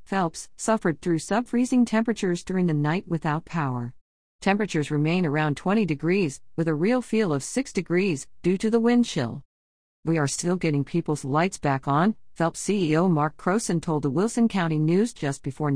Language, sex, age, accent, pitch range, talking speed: English, female, 50-69, American, 140-195 Hz, 175 wpm